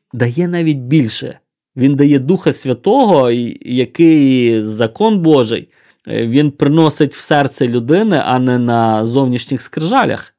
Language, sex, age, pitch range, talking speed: Ukrainian, male, 20-39, 125-165 Hz, 115 wpm